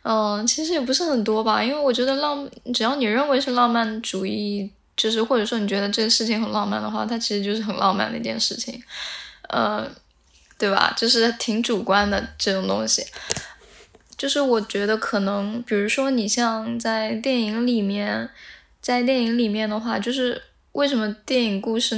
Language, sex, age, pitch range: Chinese, female, 10-29, 215-245 Hz